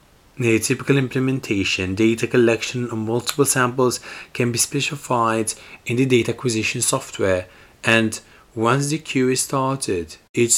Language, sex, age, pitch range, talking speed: English, male, 30-49, 105-125 Hz, 130 wpm